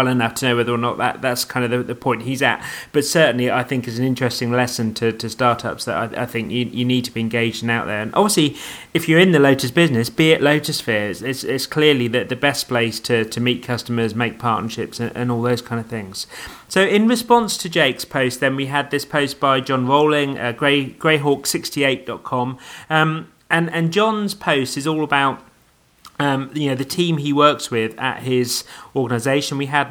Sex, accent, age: male, British, 30-49